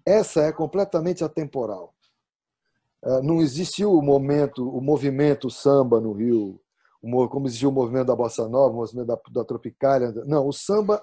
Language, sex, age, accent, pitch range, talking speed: Portuguese, male, 40-59, Brazilian, 120-155 Hz, 145 wpm